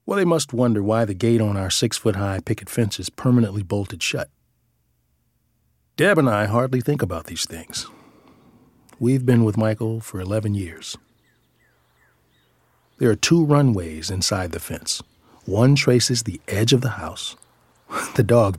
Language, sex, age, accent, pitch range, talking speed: English, male, 40-59, American, 100-130 Hz, 150 wpm